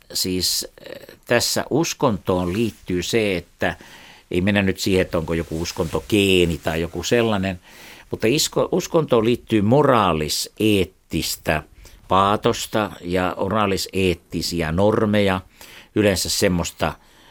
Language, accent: Finnish, native